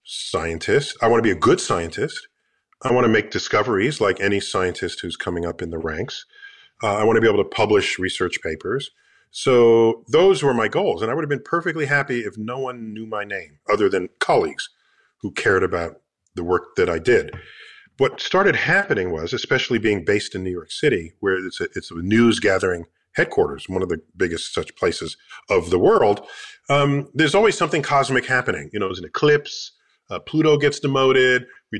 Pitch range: 115-175 Hz